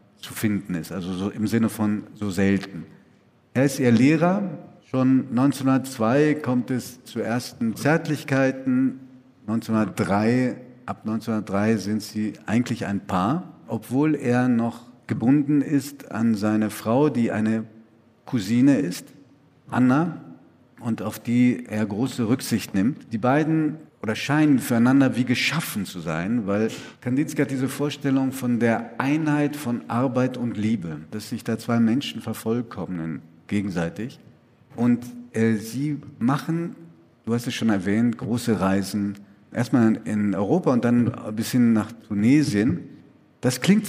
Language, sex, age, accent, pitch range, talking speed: German, male, 50-69, German, 110-135 Hz, 135 wpm